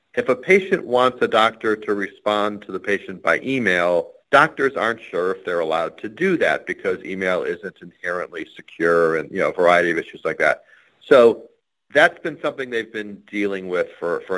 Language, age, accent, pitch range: English, 40-59, American, 100-135 Hz